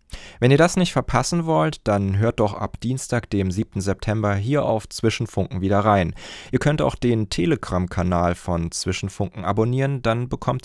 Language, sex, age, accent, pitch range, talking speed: German, male, 20-39, German, 95-125 Hz, 165 wpm